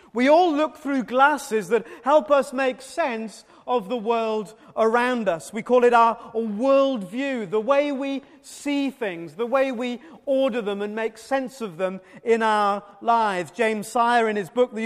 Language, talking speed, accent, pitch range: English, 180 wpm, British, 210-265 Hz